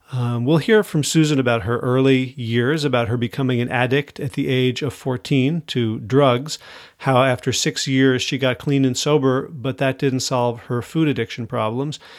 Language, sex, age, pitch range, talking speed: English, male, 40-59, 125-155 Hz, 185 wpm